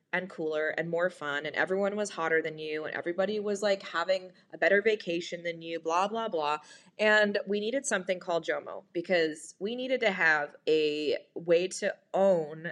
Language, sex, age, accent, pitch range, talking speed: English, female, 20-39, American, 160-185 Hz, 185 wpm